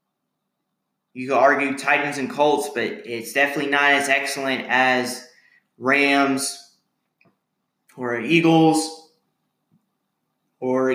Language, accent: English, American